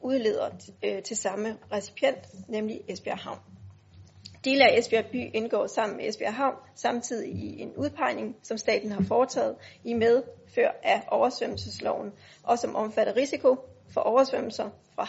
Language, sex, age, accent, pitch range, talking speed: Danish, female, 30-49, native, 190-265 Hz, 140 wpm